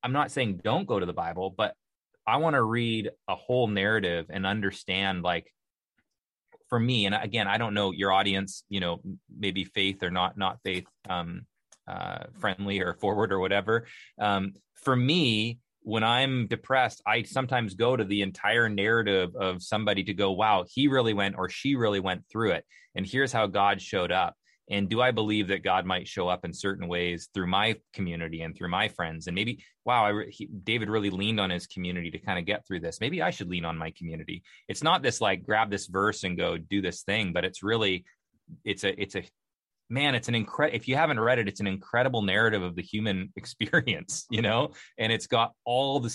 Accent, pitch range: American, 95-115 Hz